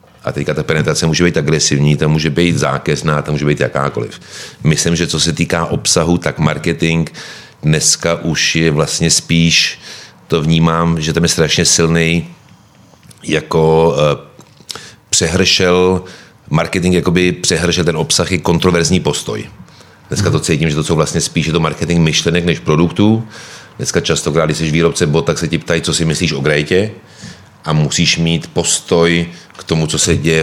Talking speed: 165 wpm